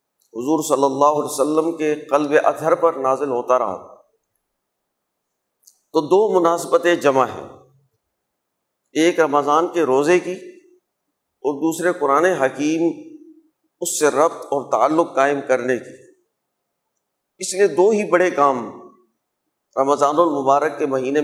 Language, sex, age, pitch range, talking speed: Urdu, male, 50-69, 145-180 Hz, 125 wpm